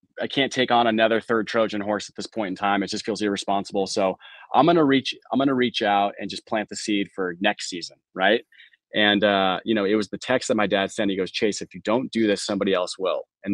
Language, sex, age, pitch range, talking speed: English, male, 20-39, 100-110 Hz, 265 wpm